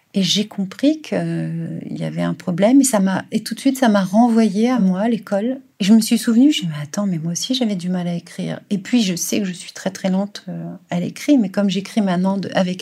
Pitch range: 170-210 Hz